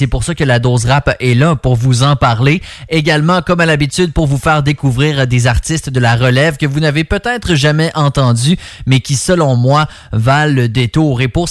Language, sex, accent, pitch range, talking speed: English, male, Canadian, 125-155 Hz, 215 wpm